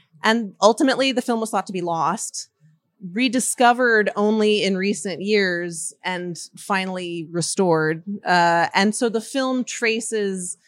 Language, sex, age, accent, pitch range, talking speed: English, female, 30-49, American, 175-205 Hz, 130 wpm